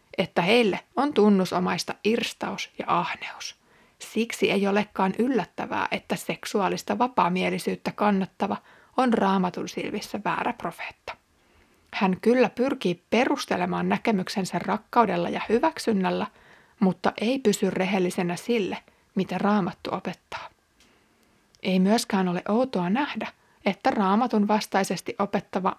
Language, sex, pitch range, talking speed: Finnish, female, 185-230 Hz, 105 wpm